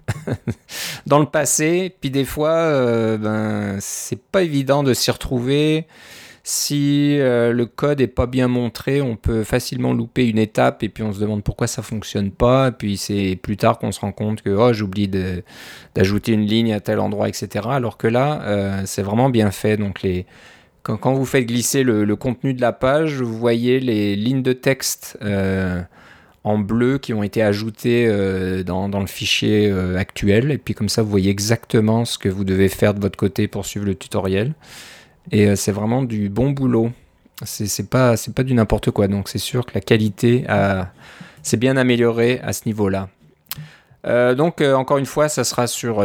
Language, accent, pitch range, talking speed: French, French, 100-130 Hz, 200 wpm